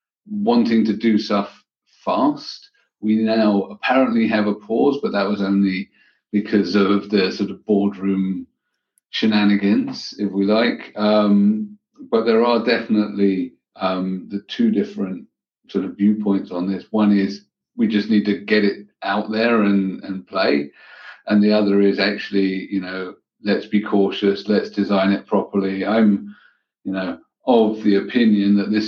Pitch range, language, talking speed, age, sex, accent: 100-115 Hz, English, 155 wpm, 40-59, male, British